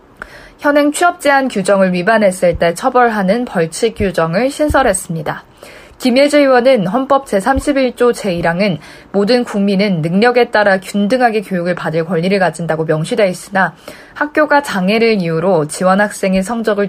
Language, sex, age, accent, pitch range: Korean, female, 20-39, native, 180-240 Hz